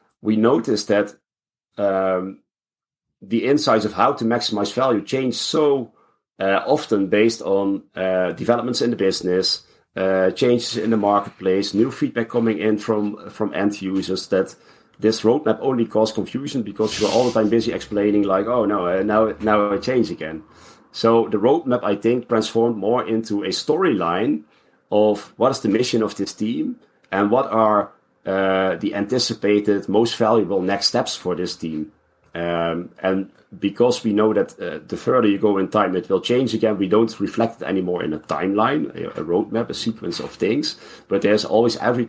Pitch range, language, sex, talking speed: 95-115 Hz, English, male, 175 wpm